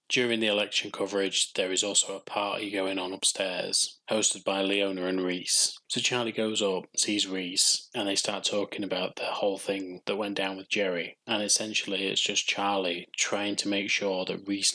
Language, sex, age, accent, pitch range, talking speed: English, male, 20-39, British, 95-105 Hz, 190 wpm